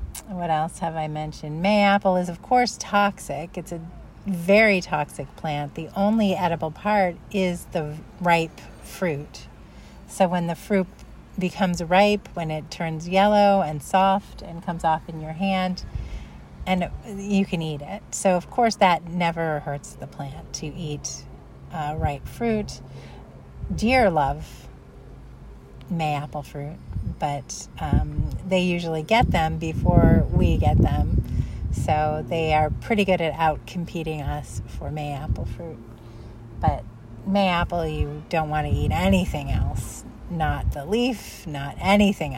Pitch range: 145-185 Hz